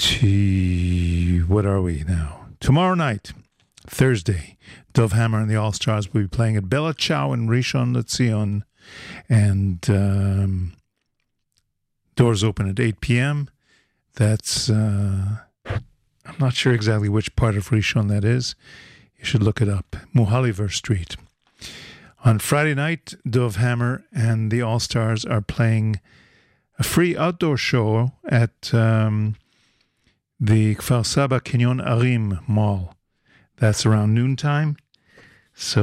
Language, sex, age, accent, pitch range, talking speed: English, male, 50-69, American, 105-125 Hz, 120 wpm